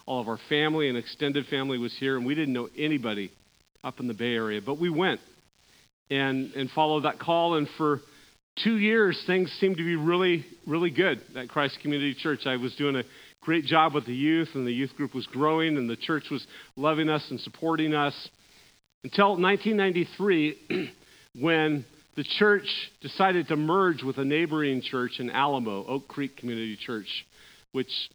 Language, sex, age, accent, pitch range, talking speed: English, male, 40-59, American, 130-165 Hz, 180 wpm